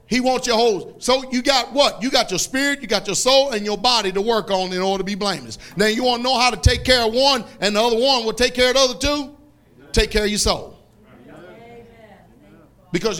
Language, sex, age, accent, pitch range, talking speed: English, male, 40-59, American, 175-240 Hz, 250 wpm